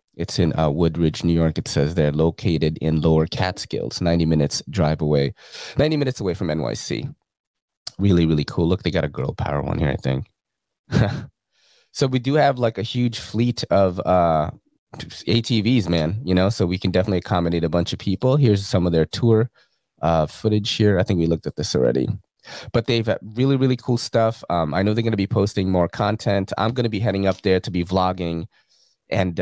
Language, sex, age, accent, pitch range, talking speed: English, male, 30-49, American, 85-115 Hz, 205 wpm